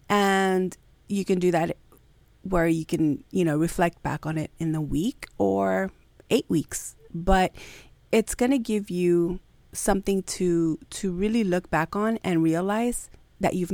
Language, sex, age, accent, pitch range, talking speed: English, female, 30-49, American, 155-190 Hz, 160 wpm